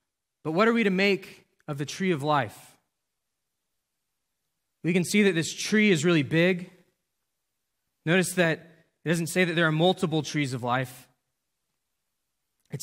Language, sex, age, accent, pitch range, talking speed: English, male, 20-39, American, 150-185 Hz, 155 wpm